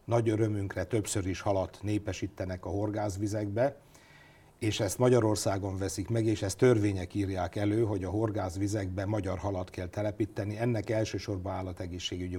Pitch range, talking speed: 95-115 Hz, 135 wpm